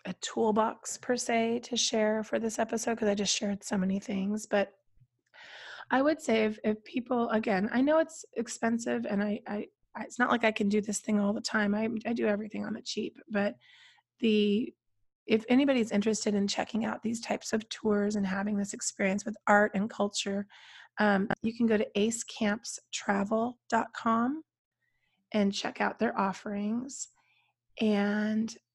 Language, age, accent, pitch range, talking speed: English, 30-49, American, 205-240 Hz, 170 wpm